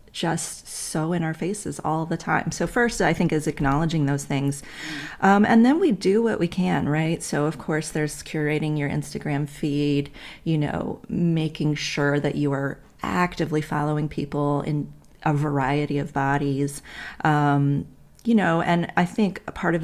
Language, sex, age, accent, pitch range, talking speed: English, female, 30-49, American, 145-165 Hz, 170 wpm